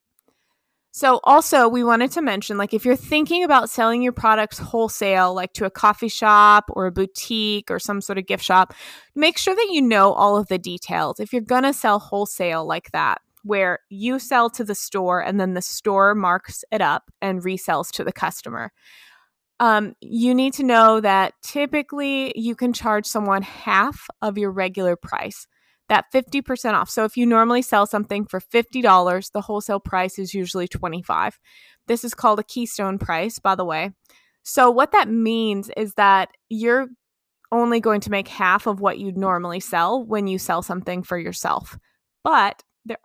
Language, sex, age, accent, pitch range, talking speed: English, female, 20-39, American, 190-240 Hz, 185 wpm